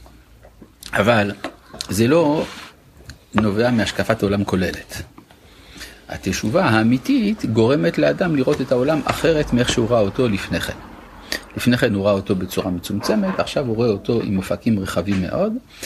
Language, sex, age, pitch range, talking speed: Hebrew, male, 50-69, 100-125 Hz, 135 wpm